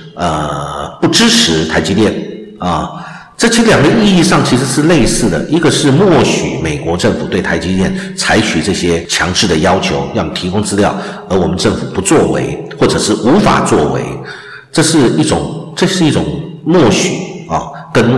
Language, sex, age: Chinese, male, 50-69